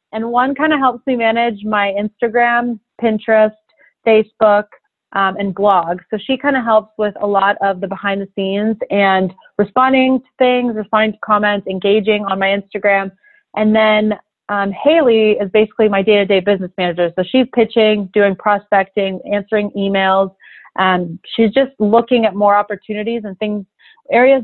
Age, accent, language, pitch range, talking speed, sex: 30-49, American, English, 195-230 Hz, 165 wpm, female